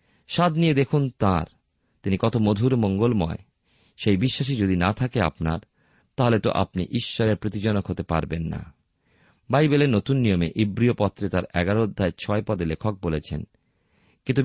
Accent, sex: native, male